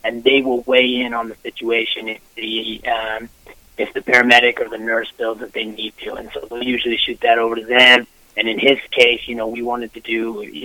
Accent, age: American, 30-49